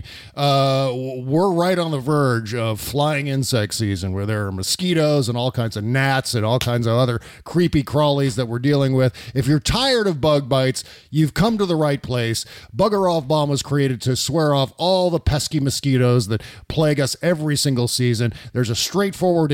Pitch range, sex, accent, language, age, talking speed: 125-160 Hz, male, American, English, 40-59, 195 wpm